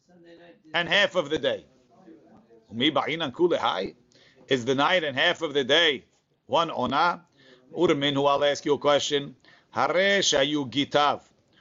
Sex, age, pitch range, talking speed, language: male, 50-69, 140-175 Hz, 125 wpm, English